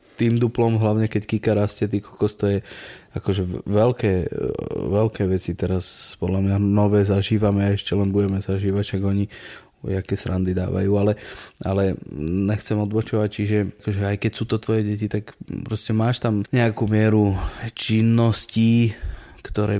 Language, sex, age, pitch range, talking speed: Slovak, male, 20-39, 100-110 Hz, 150 wpm